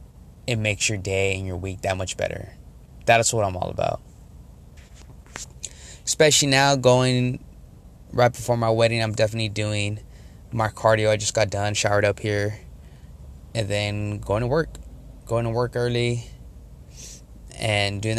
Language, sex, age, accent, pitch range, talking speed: English, male, 20-39, American, 95-115 Hz, 150 wpm